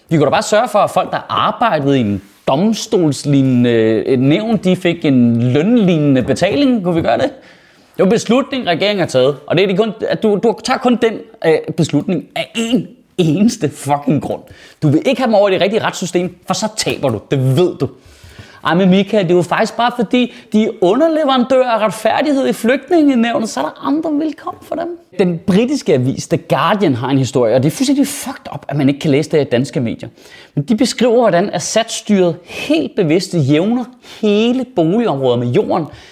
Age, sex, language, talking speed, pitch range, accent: 30-49, male, Danish, 205 wpm, 155-235 Hz, native